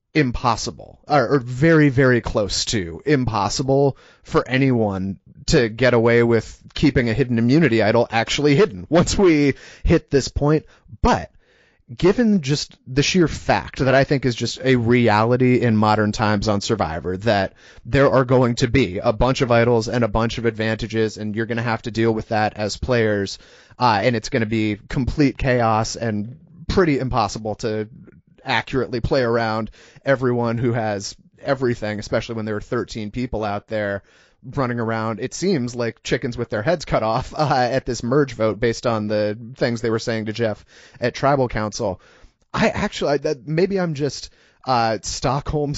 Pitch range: 110-140 Hz